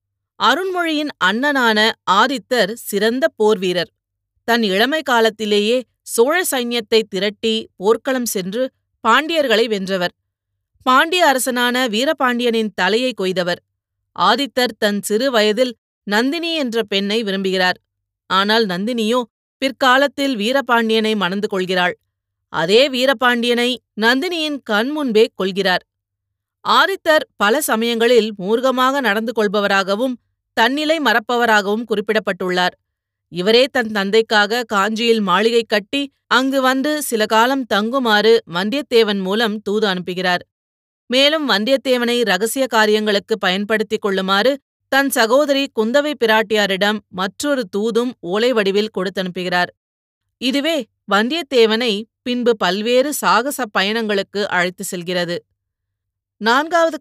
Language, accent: Tamil, native